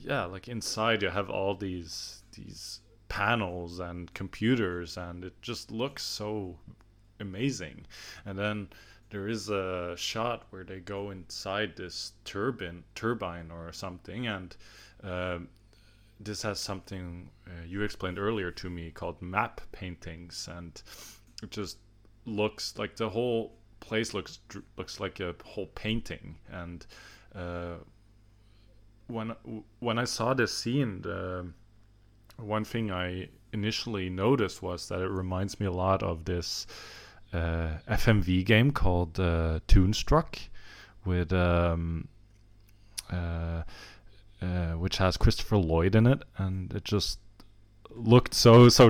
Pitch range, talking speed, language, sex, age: 90-110 Hz, 130 wpm, English, male, 20-39